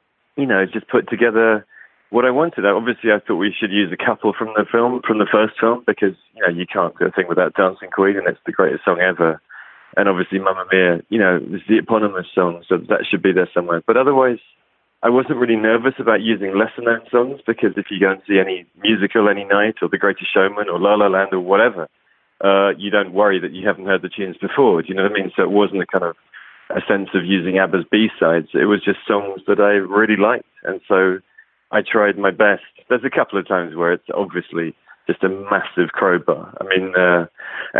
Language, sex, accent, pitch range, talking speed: English, male, British, 95-110 Hz, 230 wpm